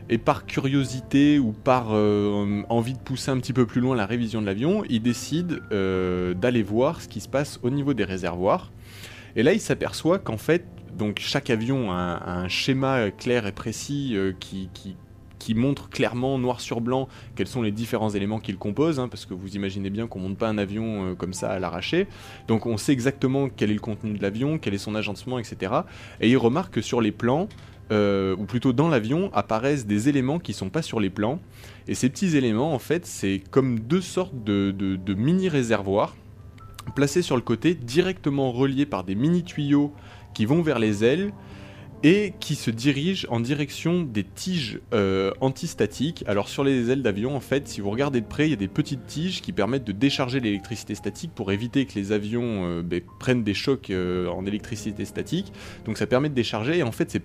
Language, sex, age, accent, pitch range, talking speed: French, male, 20-39, French, 100-135 Hz, 215 wpm